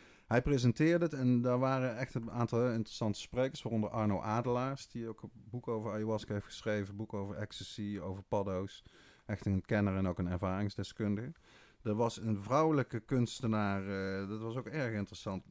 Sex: male